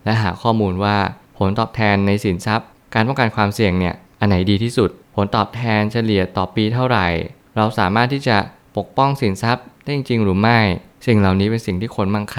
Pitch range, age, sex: 95-115 Hz, 20-39, male